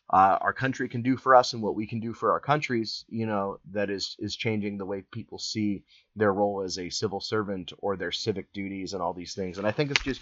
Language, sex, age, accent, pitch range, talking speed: English, male, 30-49, American, 100-125 Hz, 260 wpm